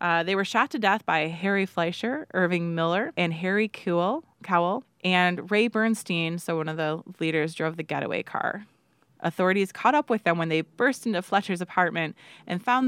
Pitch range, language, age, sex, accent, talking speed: 160-200 Hz, English, 20-39, female, American, 185 wpm